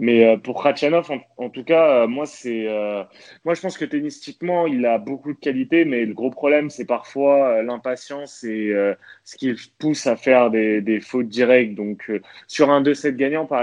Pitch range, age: 115-145 Hz, 20-39